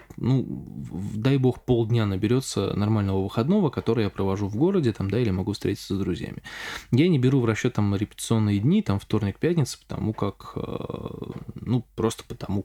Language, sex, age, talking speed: Russian, male, 20-39, 170 wpm